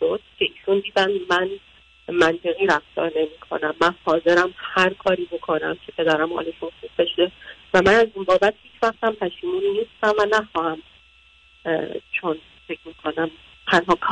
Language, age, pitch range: Persian, 40-59, 170-215 Hz